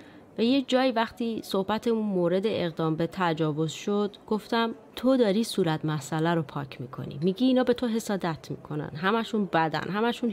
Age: 30-49